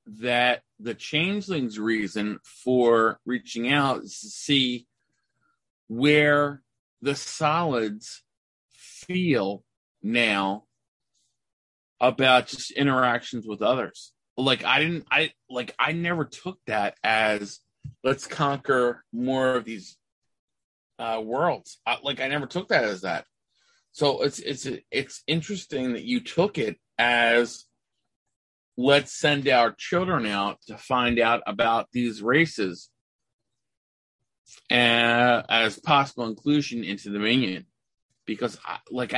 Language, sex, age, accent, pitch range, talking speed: English, male, 30-49, American, 115-145 Hz, 115 wpm